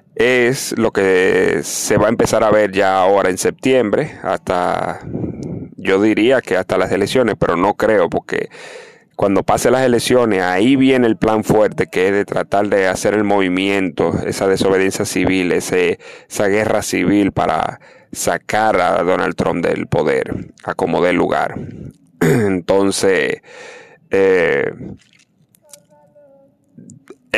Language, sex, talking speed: Spanish, male, 135 wpm